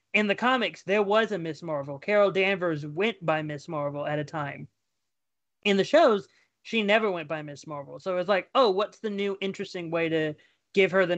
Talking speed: 215 wpm